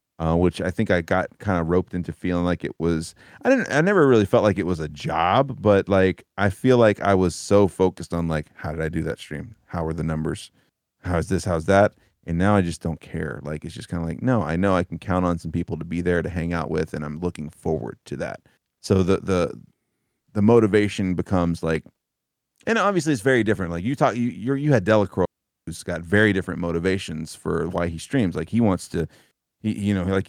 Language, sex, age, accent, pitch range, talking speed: English, male, 30-49, American, 85-105 Hz, 240 wpm